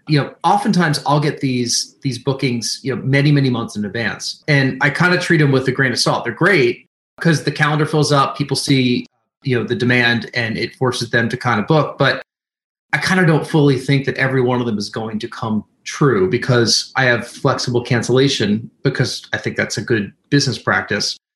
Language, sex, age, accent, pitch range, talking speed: English, male, 30-49, American, 120-145 Hz, 215 wpm